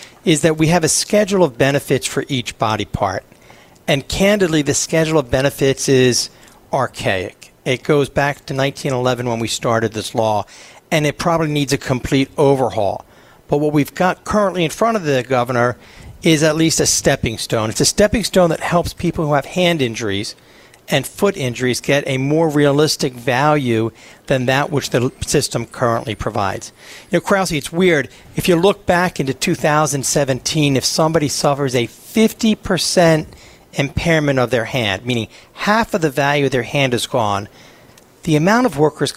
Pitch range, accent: 125-160 Hz, American